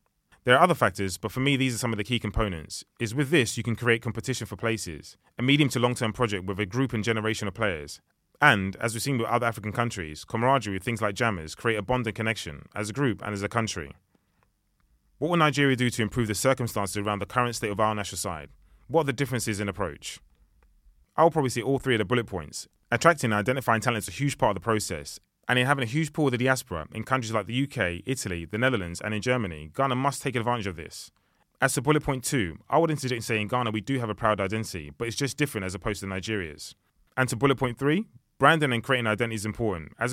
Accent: British